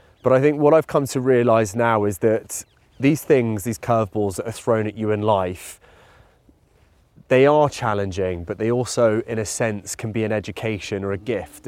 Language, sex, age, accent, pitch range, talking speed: English, male, 20-39, British, 105-125 Hz, 195 wpm